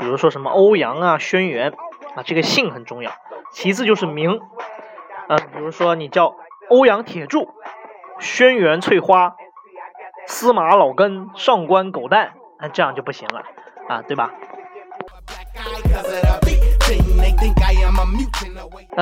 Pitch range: 170-245 Hz